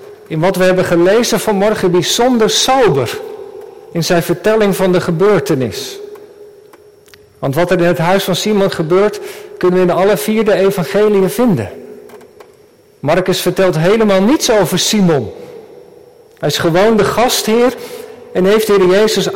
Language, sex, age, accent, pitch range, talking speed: Dutch, male, 50-69, Dutch, 190-290 Hz, 140 wpm